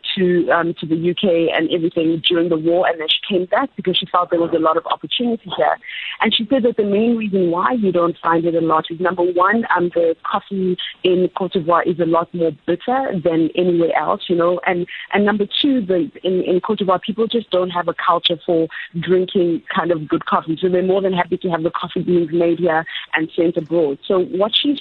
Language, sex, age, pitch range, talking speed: English, female, 20-39, 165-190 Hz, 235 wpm